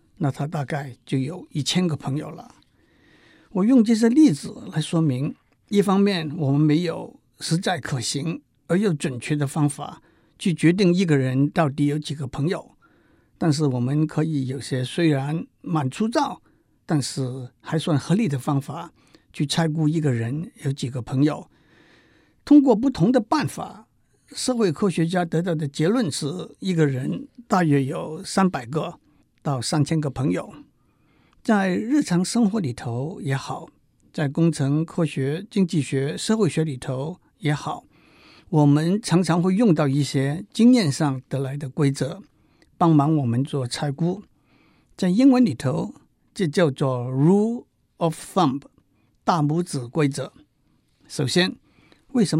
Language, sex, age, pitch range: Chinese, male, 60-79, 140-180 Hz